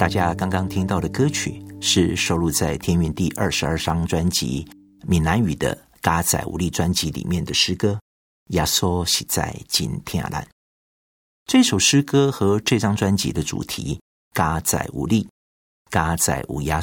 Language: Chinese